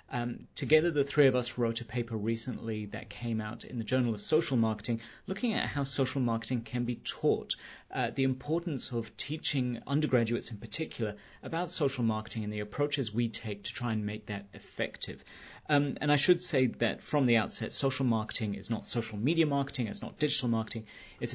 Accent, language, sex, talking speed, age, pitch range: British, English, male, 195 wpm, 30-49, 110-130 Hz